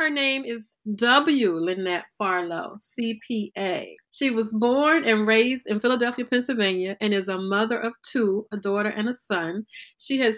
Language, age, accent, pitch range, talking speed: English, 30-49, American, 190-230 Hz, 160 wpm